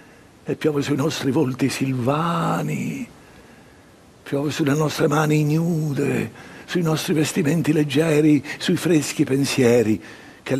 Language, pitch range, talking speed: Italian, 125-160 Hz, 110 wpm